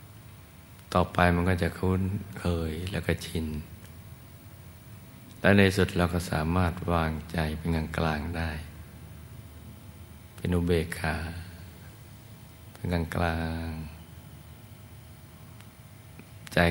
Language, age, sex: Thai, 60-79, male